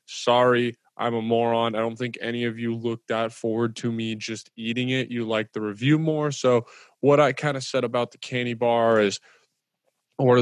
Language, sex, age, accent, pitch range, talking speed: English, male, 20-39, American, 115-130 Hz, 200 wpm